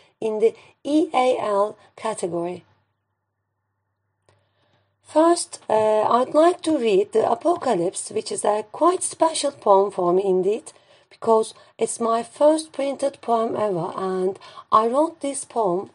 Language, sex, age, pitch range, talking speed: English, female, 40-59, 175-245 Hz, 125 wpm